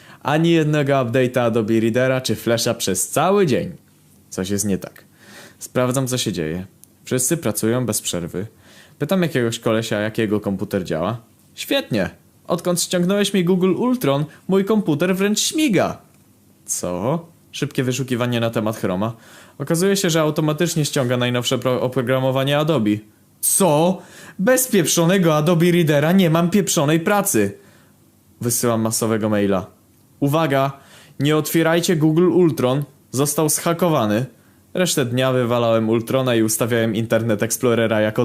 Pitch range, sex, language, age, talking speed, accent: 115-160 Hz, male, Polish, 20-39, 125 wpm, native